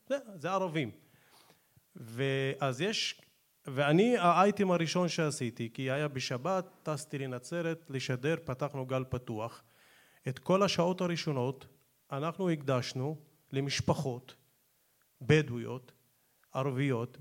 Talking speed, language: 95 wpm, Hebrew